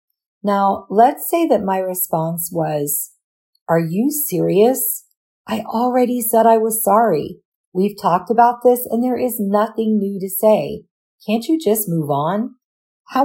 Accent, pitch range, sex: American, 170-220 Hz, female